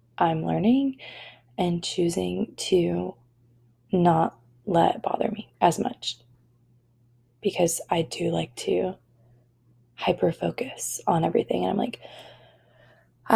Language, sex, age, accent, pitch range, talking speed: English, female, 20-39, American, 120-190 Hz, 110 wpm